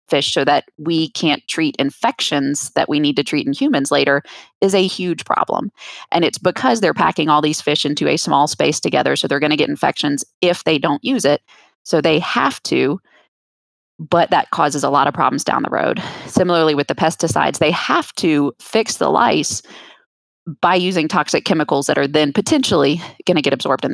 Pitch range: 145-205 Hz